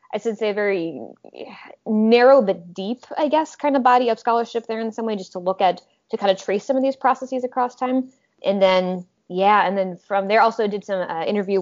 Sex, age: female, 20-39